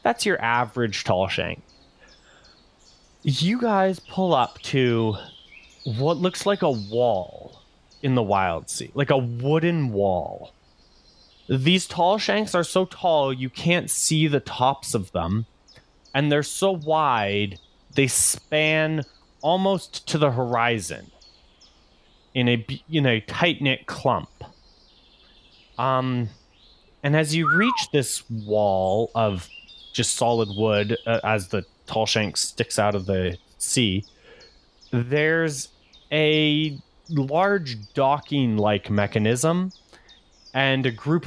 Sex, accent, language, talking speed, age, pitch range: male, American, English, 120 wpm, 30-49, 105-145 Hz